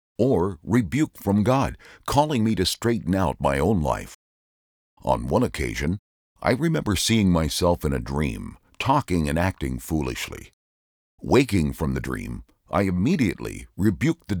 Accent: American